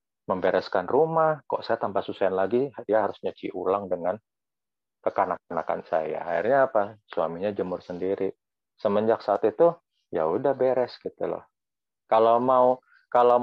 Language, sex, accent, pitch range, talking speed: Indonesian, male, native, 105-140 Hz, 130 wpm